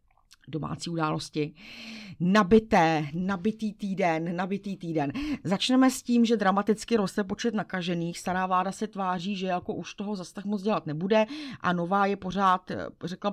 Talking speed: 145 wpm